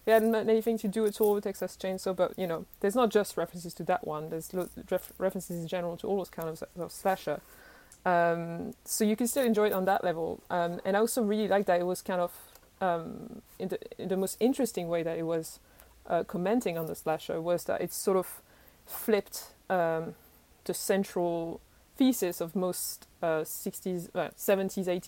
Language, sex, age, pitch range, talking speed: English, female, 20-39, 180-220 Hz, 200 wpm